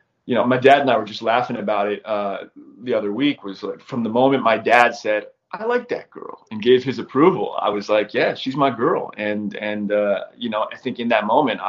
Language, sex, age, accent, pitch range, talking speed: English, male, 30-49, American, 115-165 Hz, 245 wpm